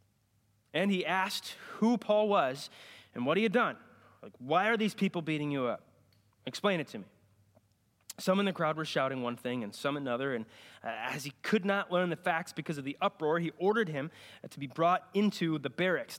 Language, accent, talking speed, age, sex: English, American, 210 wpm, 20-39, male